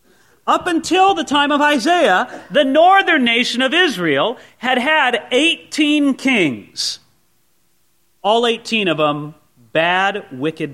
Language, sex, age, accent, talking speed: English, male, 40-59, American, 115 wpm